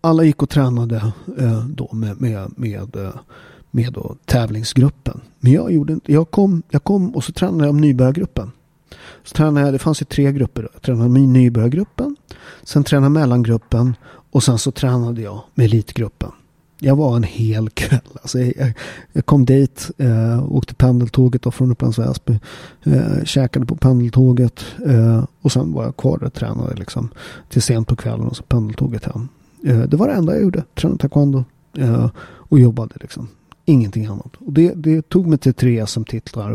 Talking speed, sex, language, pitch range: 175 wpm, male, Swedish, 120-150 Hz